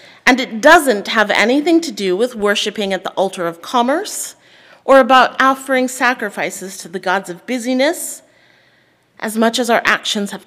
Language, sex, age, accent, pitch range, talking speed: English, female, 40-59, American, 200-265 Hz, 165 wpm